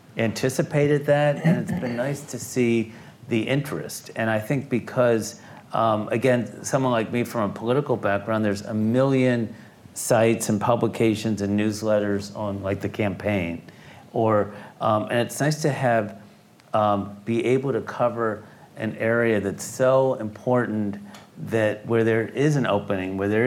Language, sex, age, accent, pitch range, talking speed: English, male, 40-59, American, 105-130 Hz, 155 wpm